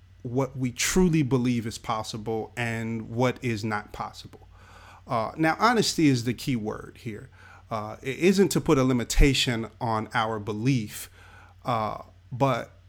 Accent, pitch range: American, 105-130 Hz